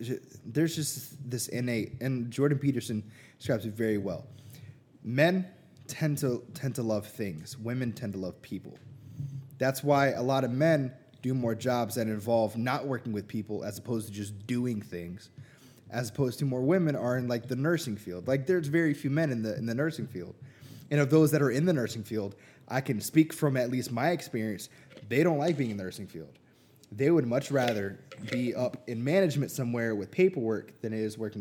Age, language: 20-39, English